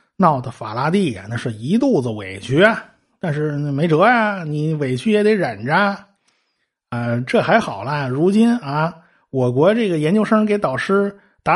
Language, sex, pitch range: Chinese, male, 130-195 Hz